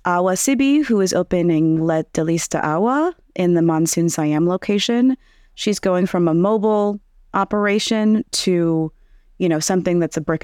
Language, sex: English, female